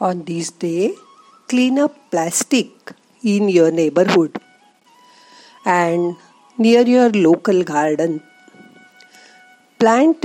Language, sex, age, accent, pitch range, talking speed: Marathi, female, 50-69, native, 180-270 Hz, 90 wpm